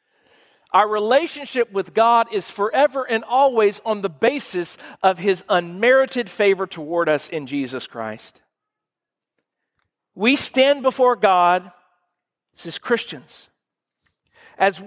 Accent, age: American, 40-59